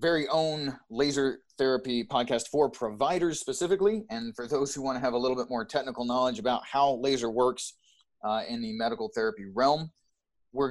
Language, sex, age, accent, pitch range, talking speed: English, male, 30-49, American, 120-150 Hz, 180 wpm